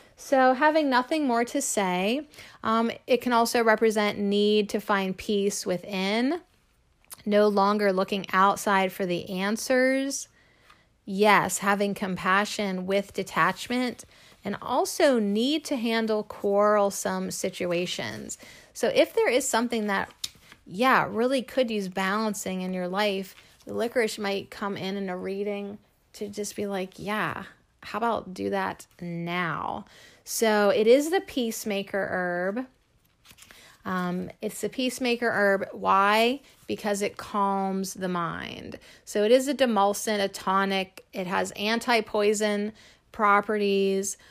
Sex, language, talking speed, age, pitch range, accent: female, English, 130 wpm, 30-49, 195-225 Hz, American